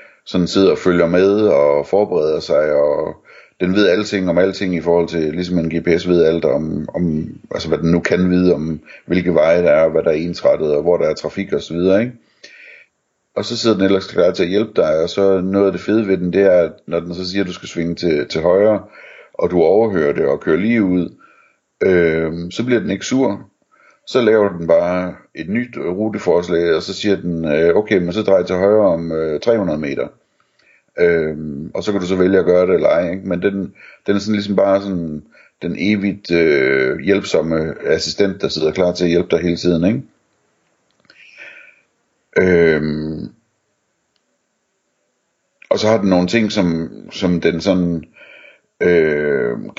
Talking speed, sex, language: 195 wpm, male, Danish